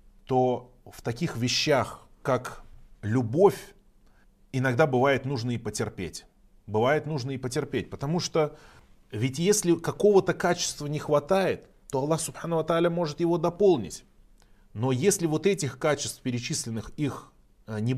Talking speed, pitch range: 120 wpm, 115-150 Hz